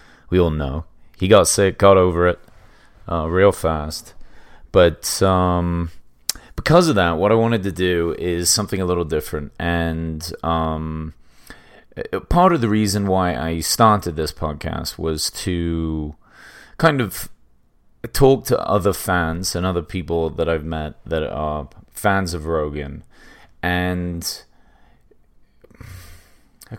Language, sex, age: English, male, 30-49